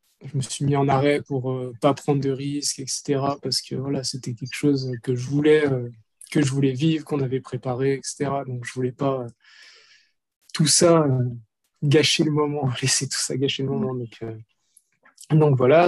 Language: French